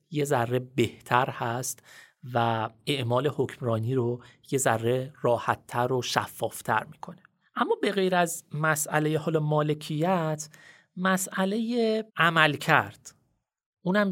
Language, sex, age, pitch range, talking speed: Persian, male, 30-49, 130-185 Hz, 100 wpm